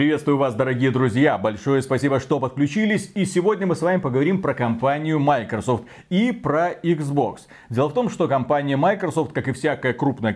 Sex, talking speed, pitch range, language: male, 175 wpm, 130-180 Hz, Russian